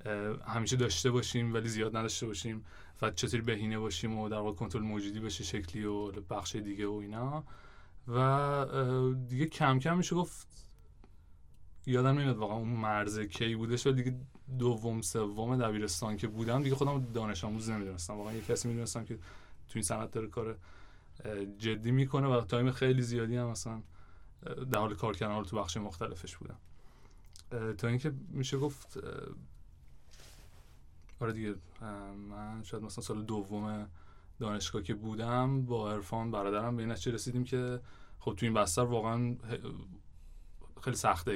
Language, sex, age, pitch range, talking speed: Persian, male, 20-39, 105-120 Hz, 150 wpm